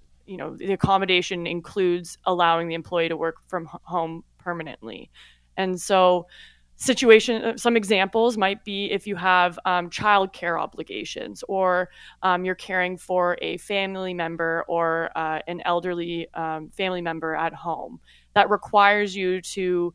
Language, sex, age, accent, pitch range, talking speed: English, female, 20-39, American, 170-200 Hz, 145 wpm